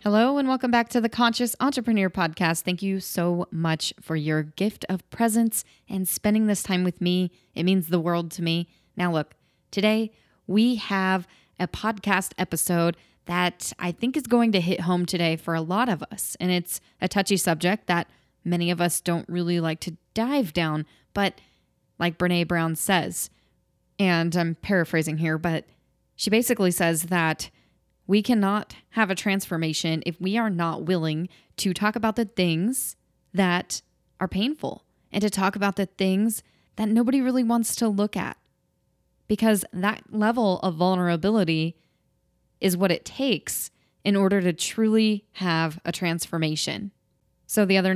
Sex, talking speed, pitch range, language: female, 165 wpm, 170-205 Hz, English